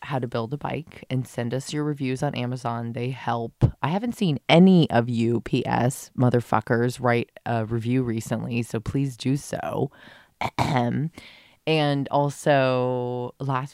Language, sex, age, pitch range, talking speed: English, female, 20-39, 120-140 Hz, 145 wpm